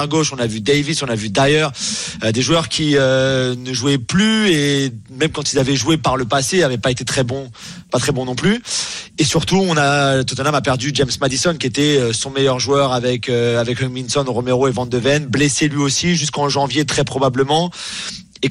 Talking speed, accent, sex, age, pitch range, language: 220 wpm, French, male, 30-49, 135-165 Hz, French